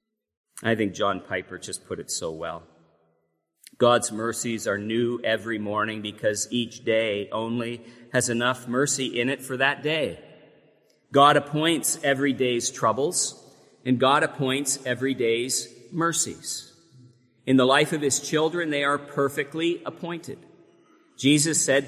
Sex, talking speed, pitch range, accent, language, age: male, 135 wpm, 120-150 Hz, American, English, 40-59